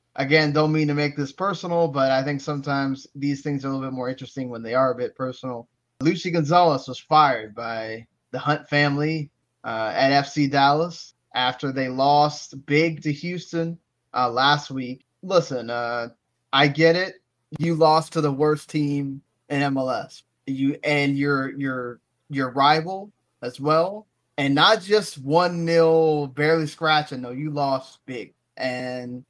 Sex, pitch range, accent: male, 135-160 Hz, American